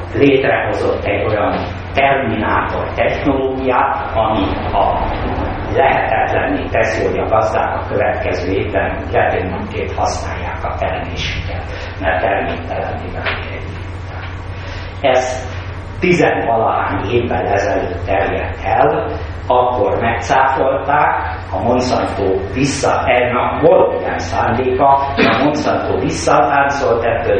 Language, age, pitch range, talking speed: Hungarian, 50-69, 90-120 Hz, 90 wpm